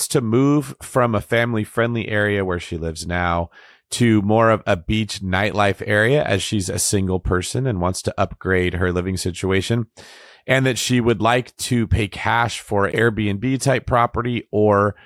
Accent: American